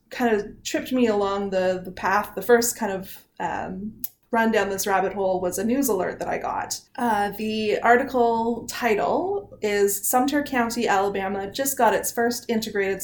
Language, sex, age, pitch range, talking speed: English, female, 20-39, 190-230 Hz, 175 wpm